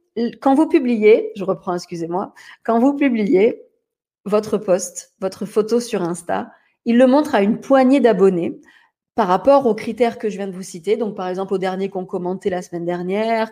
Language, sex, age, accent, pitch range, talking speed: French, female, 40-59, French, 190-255 Hz, 185 wpm